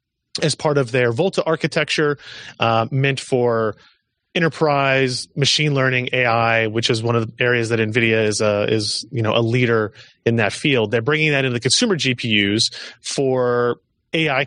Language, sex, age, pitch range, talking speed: English, male, 30-49, 115-145 Hz, 165 wpm